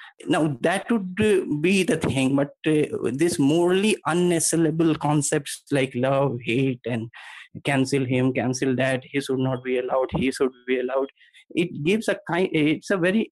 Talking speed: 160 wpm